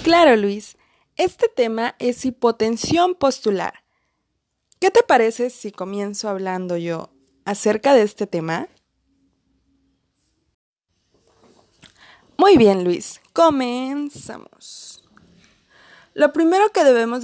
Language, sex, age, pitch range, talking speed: Spanish, female, 20-39, 205-280 Hz, 90 wpm